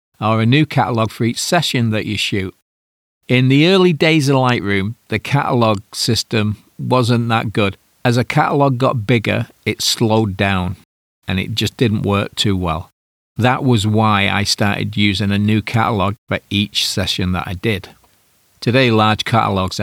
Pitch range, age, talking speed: 95-115 Hz, 40-59, 165 wpm